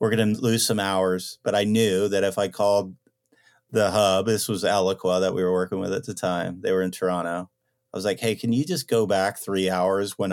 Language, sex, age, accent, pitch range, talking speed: English, male, 40-59, American, 105-130 Hz, 245 wpm